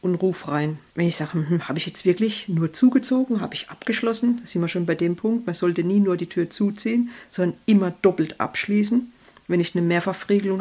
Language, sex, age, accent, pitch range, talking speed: German, female, 50-69, German, 175-215 Hz, 210 wpm